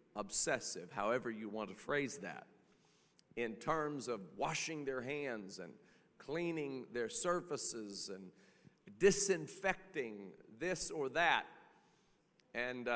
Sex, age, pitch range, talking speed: male, 40-59, 125-170 Hz, 105 wpm